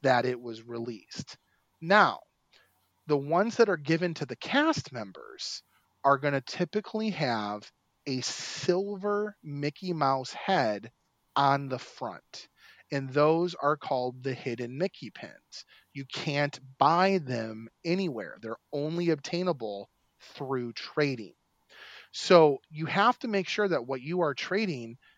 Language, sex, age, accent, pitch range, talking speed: English, male, 30-49, American, 125-155 Hz, 130 wpm